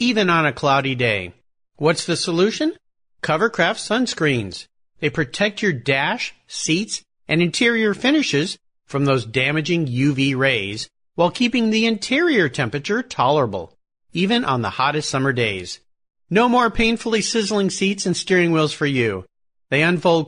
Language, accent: English, American